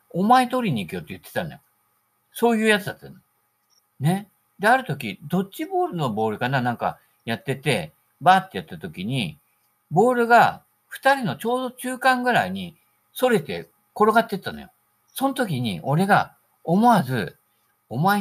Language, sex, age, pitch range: Japanese, male, 50-69, 155-240 Hz